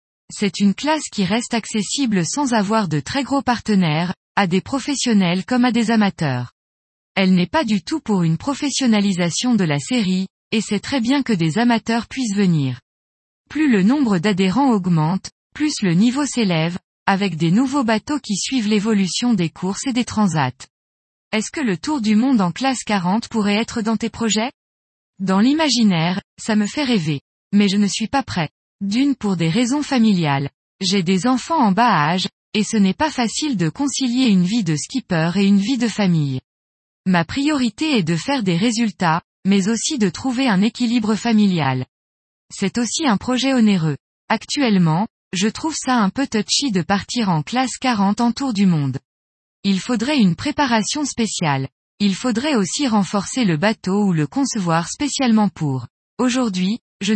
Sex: female